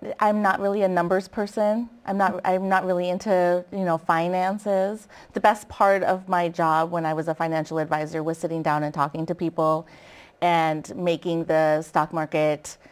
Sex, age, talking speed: female, 30-49, 180 wpm